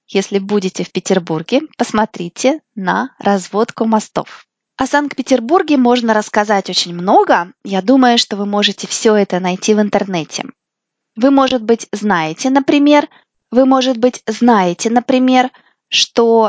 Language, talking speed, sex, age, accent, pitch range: Russian, 125 wpm, female, 20-39, native, 205-260 Hz